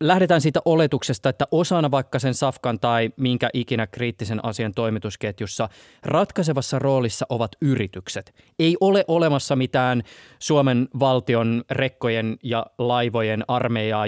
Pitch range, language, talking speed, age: 115-145 Hz, Finnish, 120 wpm, 20-39